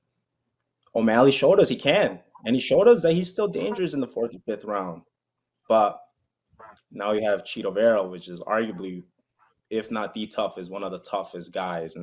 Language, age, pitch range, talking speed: English, 20-39, 100-140 Hz, 190 wpm